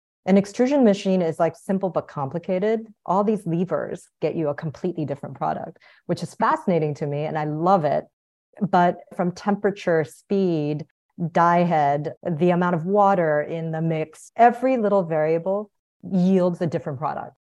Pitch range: 155-190 Hz